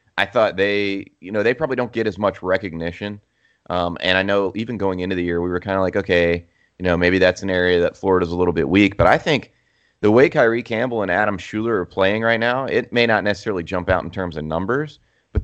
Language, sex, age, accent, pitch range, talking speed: English, male, 30-49, American, 90-105 Hz, 255 wpm